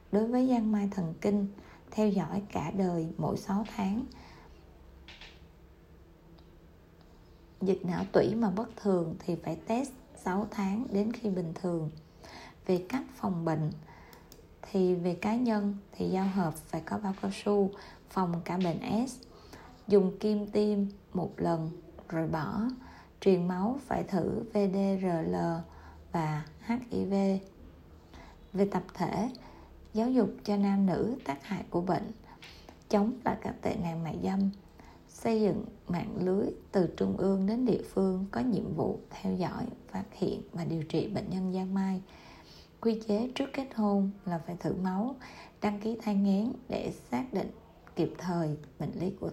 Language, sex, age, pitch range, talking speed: Vietnamese, female, 20-39, 165-210 Hz, 155 wpm